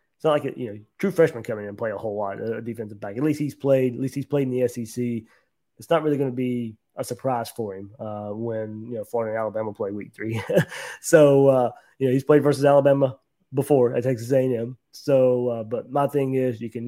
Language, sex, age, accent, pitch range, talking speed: English, male, 20-39, American, 120-140 Hz, 245 wpm